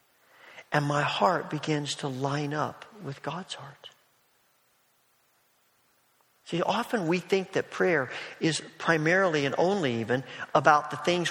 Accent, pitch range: American, 130-165 Hz